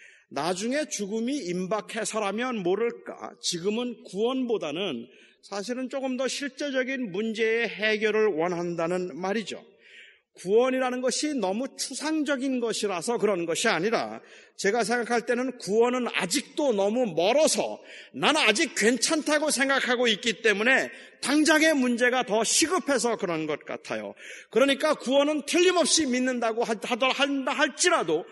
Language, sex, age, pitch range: Korean, male, 40-59, 205-275 Hz